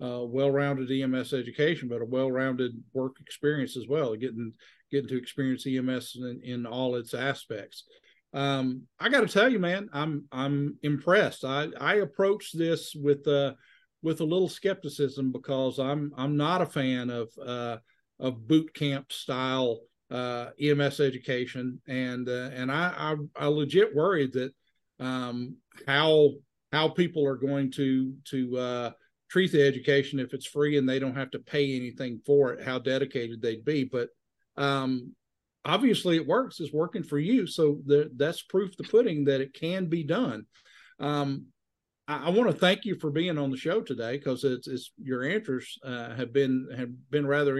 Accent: American